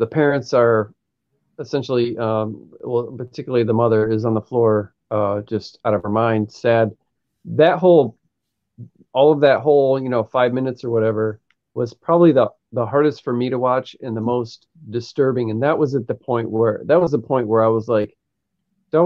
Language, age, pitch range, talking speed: English, 40-59, 115-150 Hz, 190 wpm